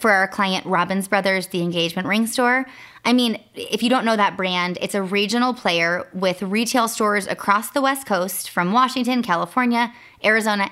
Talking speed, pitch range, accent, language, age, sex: 180 wpm, 190-250 Hz, American, English, 20-39, female